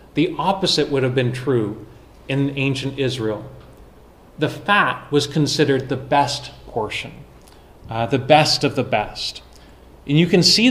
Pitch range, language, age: 125-150 Hz, English, 30-49